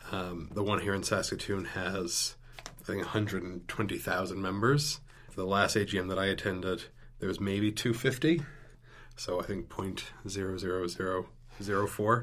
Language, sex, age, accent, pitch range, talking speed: English, male, 30-49, American, 100-120 Hz, 125 wpm